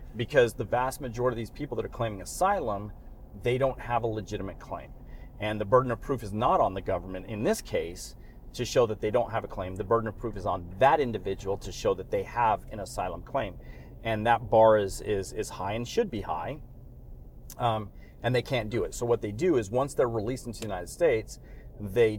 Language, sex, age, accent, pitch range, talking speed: English, male, 40-59, American, 105-125 Hz, 225 wpm